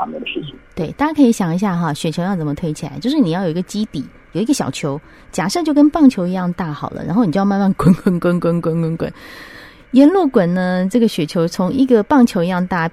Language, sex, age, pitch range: Chinese, female, 30-49, 165-240 Hz